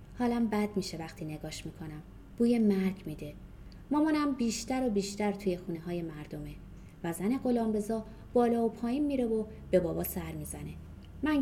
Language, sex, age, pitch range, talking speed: Persian, female, 30-49, 180-240 Hz, 160 wpm